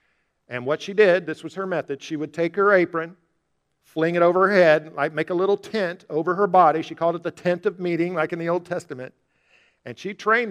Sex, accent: male, American